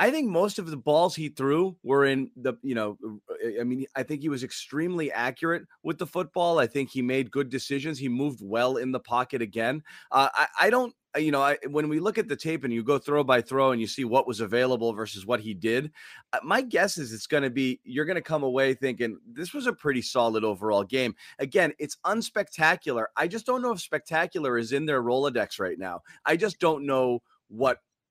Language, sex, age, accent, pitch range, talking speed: English, male, 30-49, American, 115-150 Hz, 225 wpm